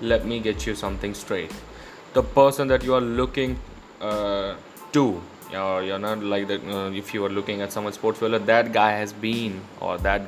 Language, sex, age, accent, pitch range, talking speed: English, male, 20-39, Indian, 100-120 Hz, 195 wpm